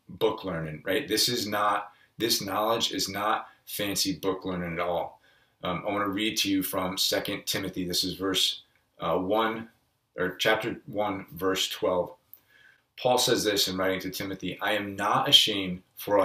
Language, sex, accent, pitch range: English, male, American, 95-115 Hz